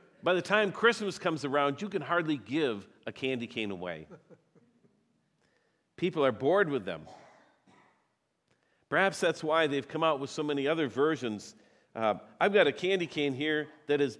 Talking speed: 165 wpm